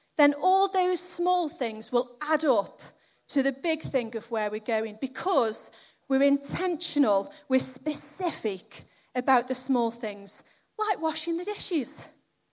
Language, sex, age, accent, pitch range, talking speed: English, female, 30-49, British, 240-350 Hz, 140 wpm